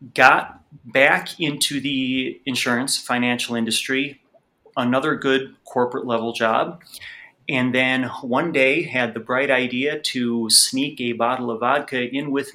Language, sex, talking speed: English, male, 135 wpm